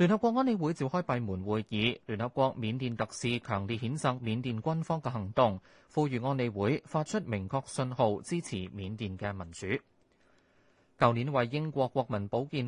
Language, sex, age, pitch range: Chinese, male, 20-39, 110-155 Hz